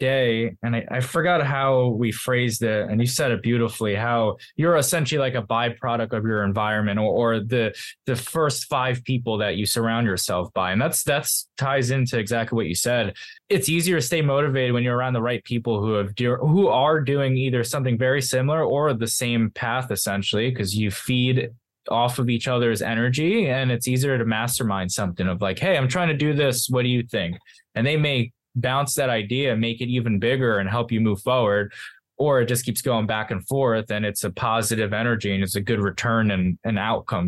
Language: English